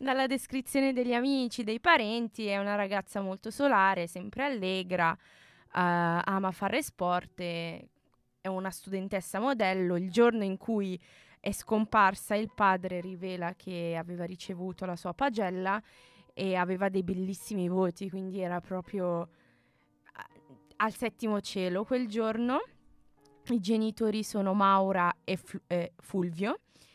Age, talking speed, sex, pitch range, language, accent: 20-39, 125 wpm, female, 185-230 Hz, Italian, native